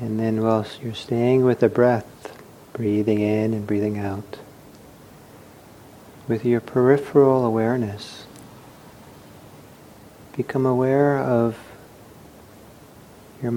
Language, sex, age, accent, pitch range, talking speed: English, male, 50-69, American, 100-130 Hz, 95 wpm